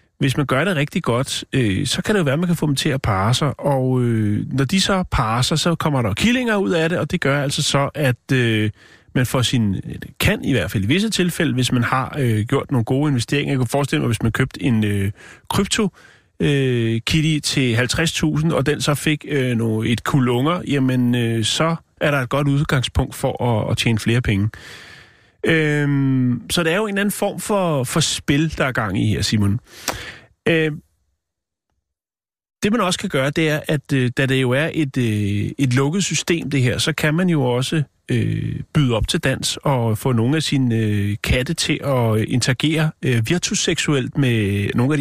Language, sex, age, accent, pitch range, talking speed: Danish, male, 30-49, native, 120-155 Hz, 205 wpm